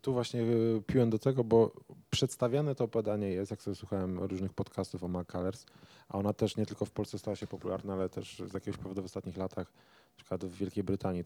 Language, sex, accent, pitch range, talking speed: Polish, male, native, 95-115 Hz, 220 wpm